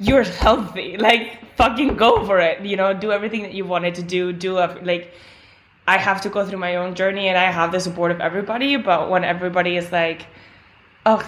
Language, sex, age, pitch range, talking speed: English, female, 20-39, 175-220 Hz, 205 wpm